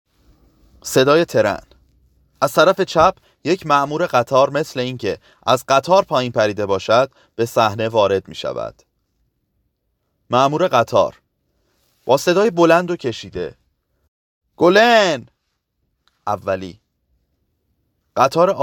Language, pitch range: Persian, 95-145 Hz